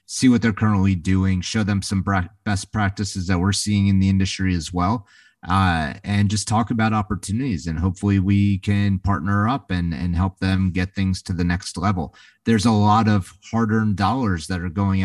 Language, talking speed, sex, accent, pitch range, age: English, 195 wpm, male, American, 90-100 Hz, 30-49